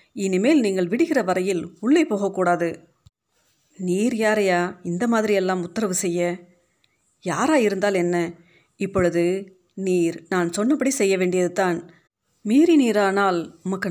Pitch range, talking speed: 170-200 Hz, 105 wpm